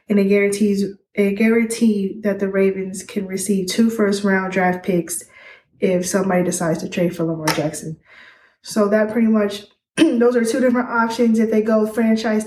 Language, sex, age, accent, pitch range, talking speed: English, female, 20-39, American, 190-215 Hz, 170 wpm